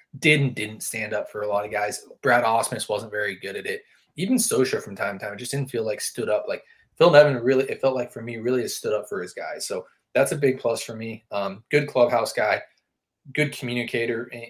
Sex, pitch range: male, 110-140 Hz